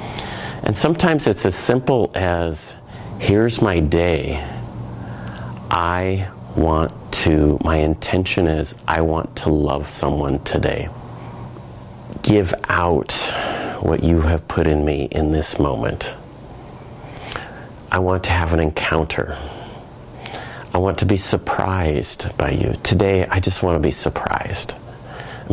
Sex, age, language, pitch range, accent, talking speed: male, 40-59, English, 75-100 Hz, American, 125 wpm